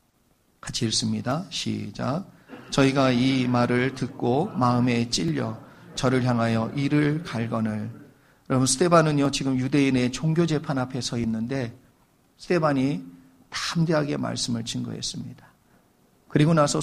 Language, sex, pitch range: Korean, male, 120-160 Hz